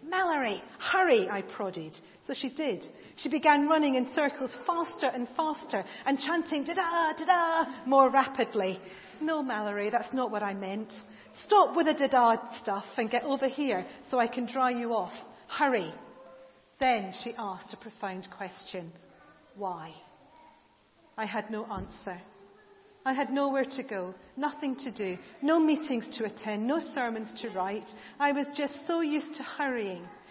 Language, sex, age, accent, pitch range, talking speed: English, female, 40-59, British, 210-305 Hz, 155 wpm